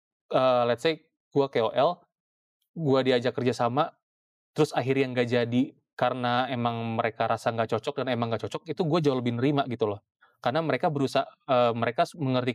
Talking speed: 165 wpm